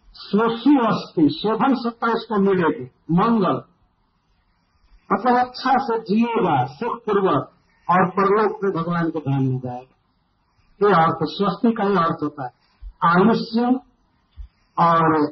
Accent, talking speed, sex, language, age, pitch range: native, 120 wpm, male, Hindi, 50-69, 150-225 Hz